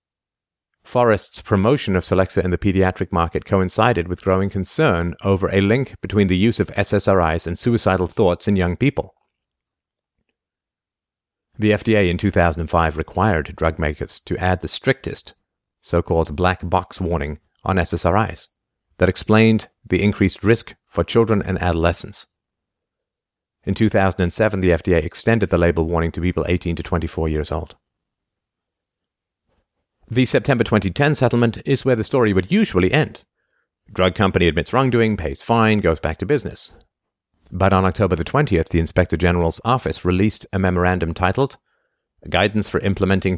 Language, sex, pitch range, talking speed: English, male, 85-105 Hz, 140 wpm